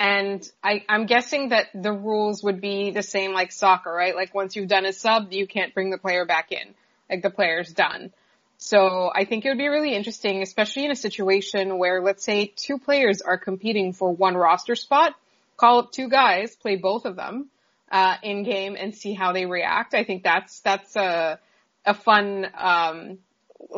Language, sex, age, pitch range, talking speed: English, female, 20-39, 190-220 Hz, 195 wpm